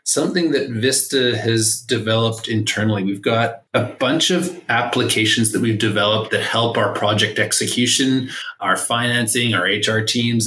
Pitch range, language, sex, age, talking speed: 110-135 Hz, English, male, 20-39, 145 wpm